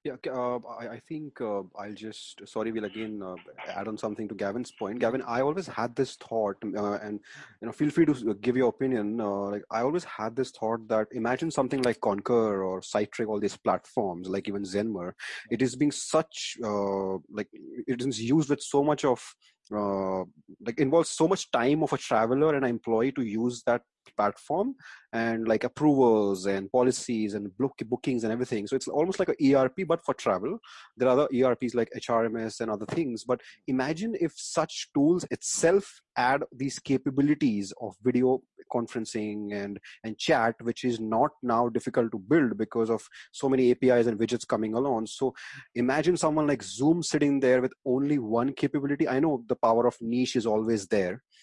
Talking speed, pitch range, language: 185 wpm, 110-135 Hz, English